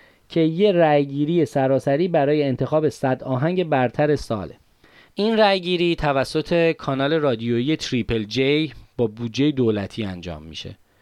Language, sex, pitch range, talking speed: Persian, male, 125-165 Hz, 120 wpm